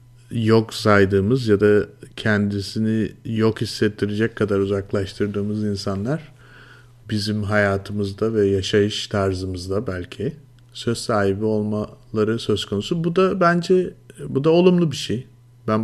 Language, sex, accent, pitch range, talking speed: Turkish, male, native, 100-125 Hz, 115 wpm